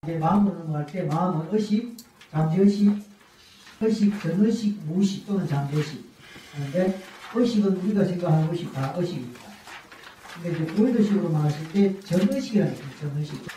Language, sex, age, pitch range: Korean, male, 40-59, 165-210 Hz